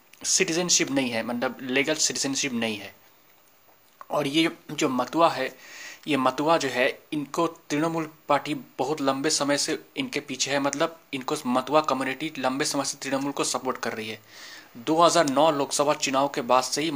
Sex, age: male, 30-49